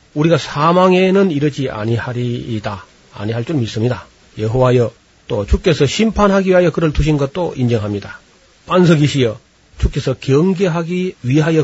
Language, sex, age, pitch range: Korean, male, 40-59, 120-160 Hz